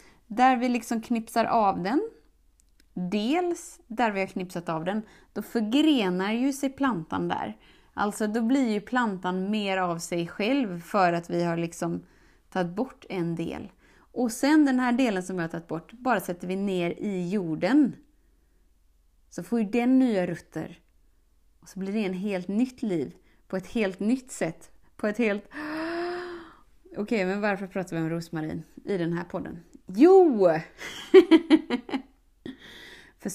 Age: 20-39